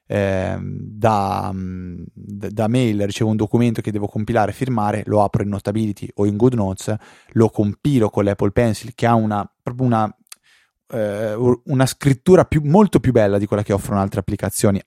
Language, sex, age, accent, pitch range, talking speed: Italian, male, 20-39, native, 100-125 Hz, 165 wpm